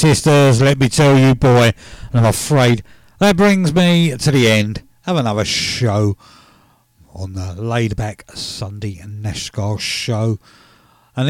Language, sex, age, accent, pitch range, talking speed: English, male, 50-69, British, 105-145 Hz, 135 wpm